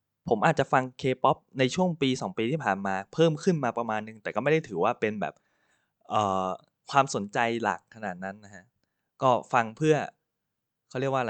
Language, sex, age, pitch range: Thai, male, 20-39, 100-135 Hz